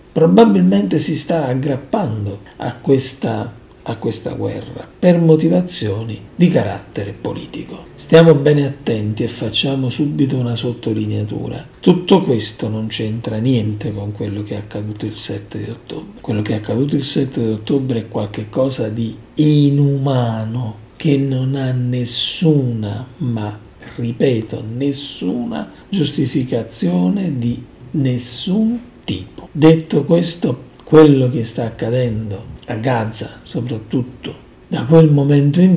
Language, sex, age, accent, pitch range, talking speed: Italian, male, 50-69, native, 110-150 Hz, 120 wpm